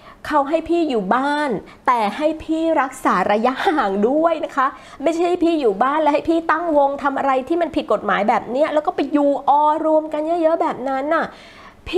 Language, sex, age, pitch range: Thai, female, 20-39, 235-320 Hz